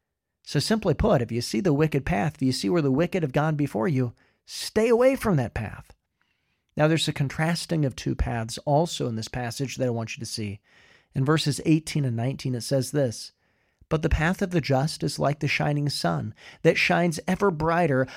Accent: American